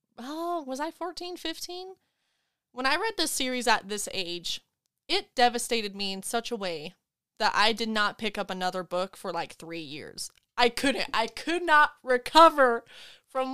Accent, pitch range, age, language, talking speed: American, 235-320 Hz, 20-39, English, 175 wpm